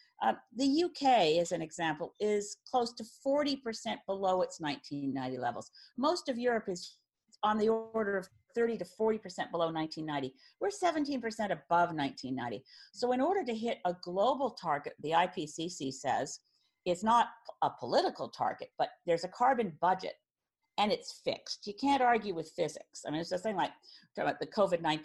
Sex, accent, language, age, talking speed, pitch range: female, American, English, 50-69, 165 wpm, 165-235 Hz